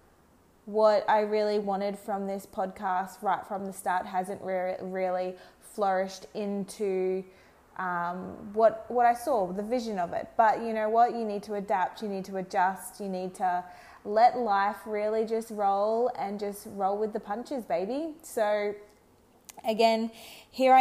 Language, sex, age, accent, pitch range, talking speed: English, female, 20-39, Australian, 185-215 Hz, 160 wpm